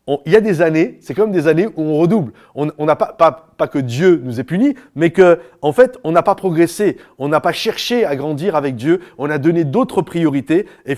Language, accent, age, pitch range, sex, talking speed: French, French, 30-49, 135-180 Hz, male, 240 wpm